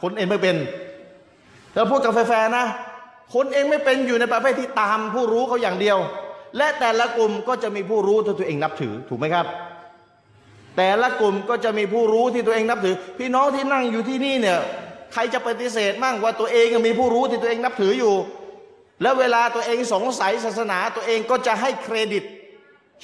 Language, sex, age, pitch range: Thai, male, 30-49, 195-255 Hz